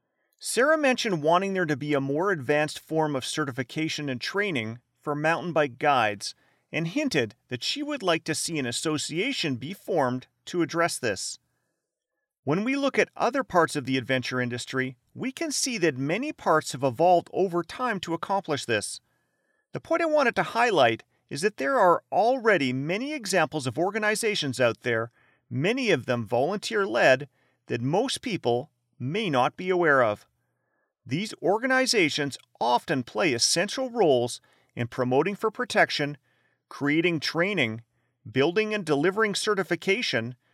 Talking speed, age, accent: 150 wpm, 40-59, American